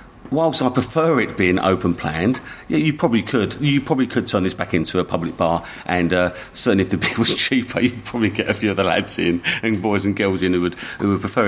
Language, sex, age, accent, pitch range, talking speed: English, male, 40-59, British, 90-110 Hz, 245 wpm